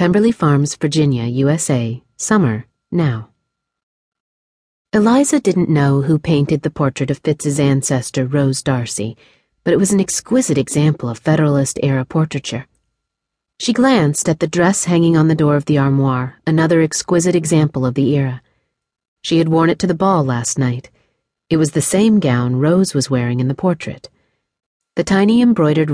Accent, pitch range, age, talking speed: American, 130-170 Hz, 40-59, 155 wpm